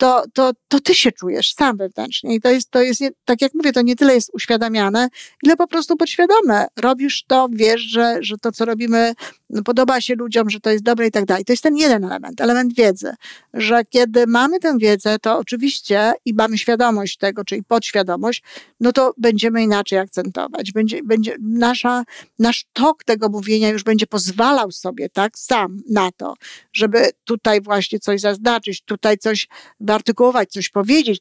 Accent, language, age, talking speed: native, Polish, 50-69, 185 wpm